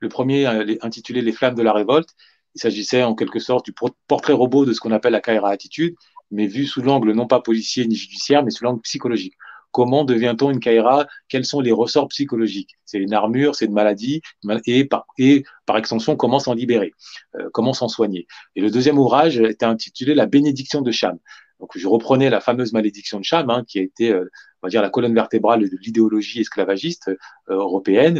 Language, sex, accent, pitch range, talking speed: French, male, French, 110-140 Hz, 205 wpm